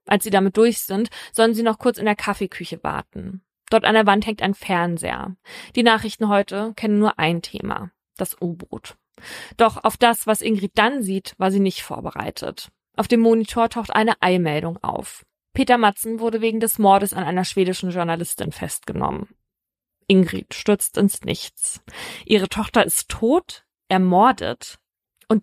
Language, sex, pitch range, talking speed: German, female, 190-225 Hz, 160 wpm